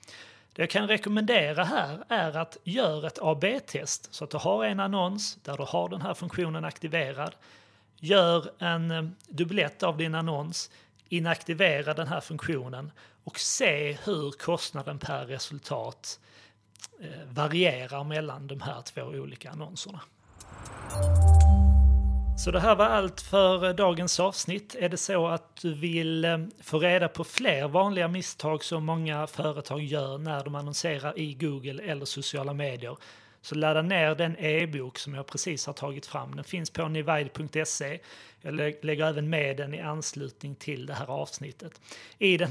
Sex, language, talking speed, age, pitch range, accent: male, Swedish, 150 wpm, 30-49, 135-170 Hz, native